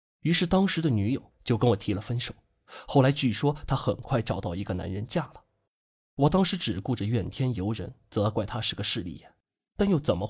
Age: 20-39